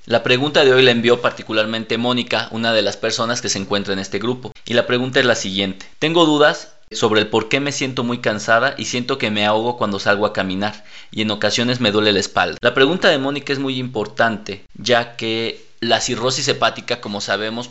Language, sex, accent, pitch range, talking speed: Spanish, male, Mexican, 105-125 Hz, 215 wpm